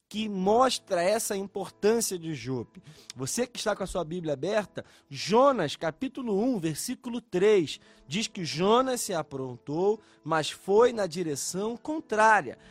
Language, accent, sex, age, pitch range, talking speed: Portuguese, Brazilian, male, 20-39, 150-215 Hz, 135 wpm